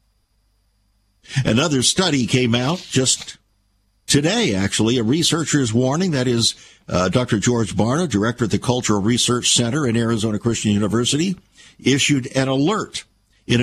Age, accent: 60-79, American